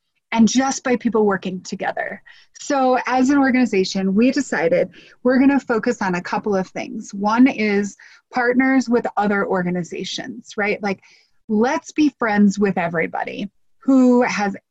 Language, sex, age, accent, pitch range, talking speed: English, female, 30-49, American, 195-255 Hz, 145 wpm